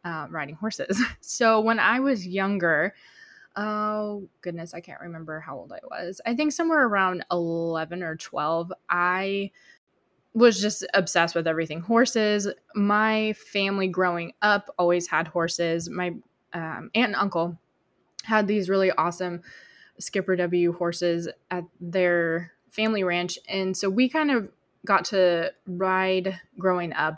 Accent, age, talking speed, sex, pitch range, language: American, 20-39, 140 wpm, female, 175-210 Hz, English